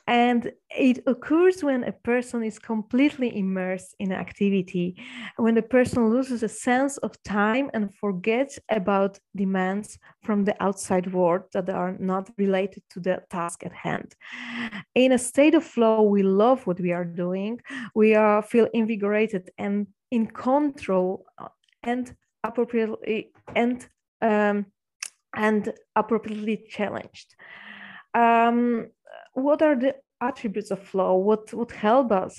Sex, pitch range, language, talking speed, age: female, 200-245 Hz, English, 125 wpm, 20-39